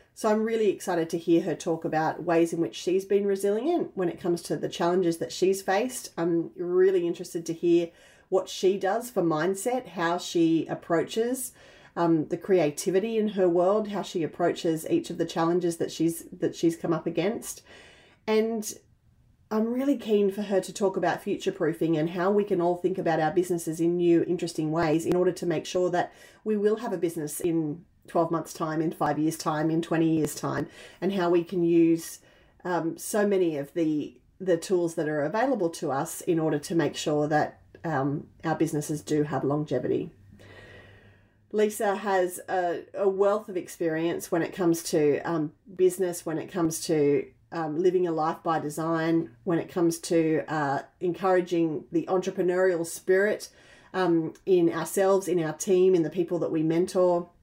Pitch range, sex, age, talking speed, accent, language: 160-185 Hz, female, 30-49, 185 wpm, Australian, English